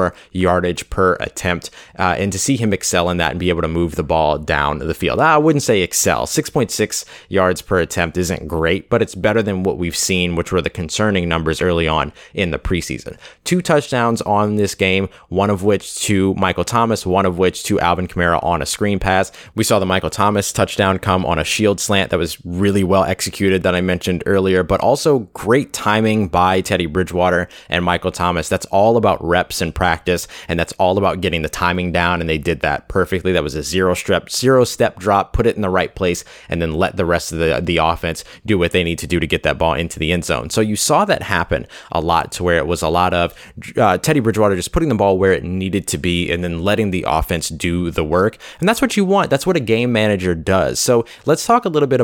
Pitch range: 85-105 Hz